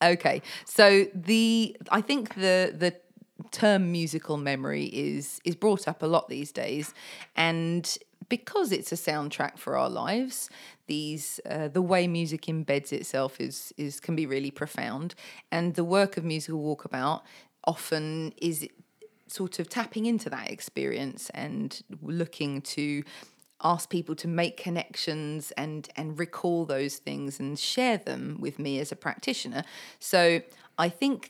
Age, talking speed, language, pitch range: 30-49, 150 wpm, English, 150-210 Hz